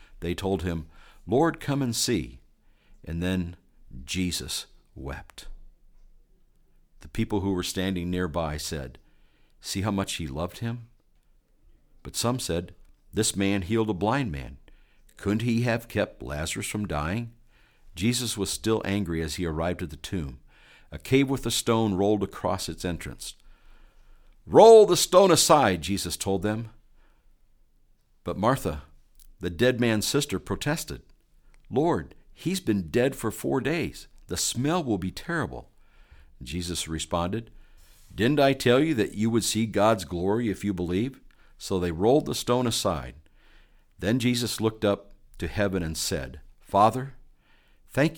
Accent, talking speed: American, 145 wpm